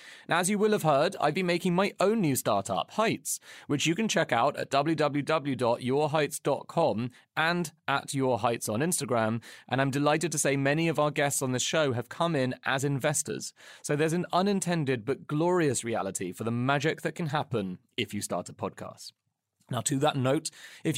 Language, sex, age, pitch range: English, male, 30-49, 125-160 Hz